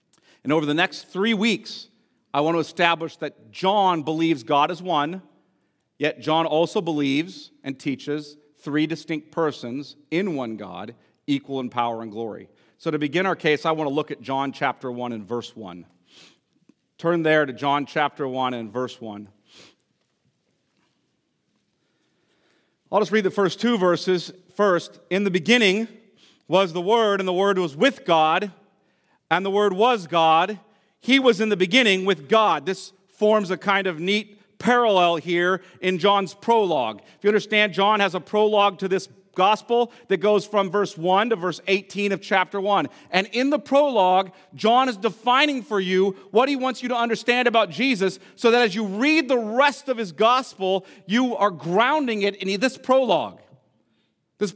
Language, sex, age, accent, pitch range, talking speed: English, male, 40-59, American, 160-220 Hz, 175 wpm